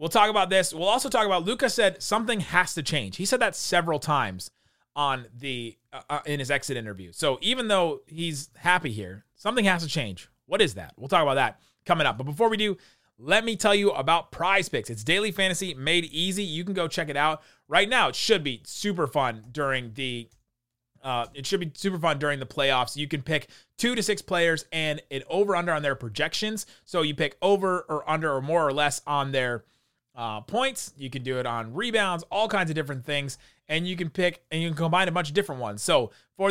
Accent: American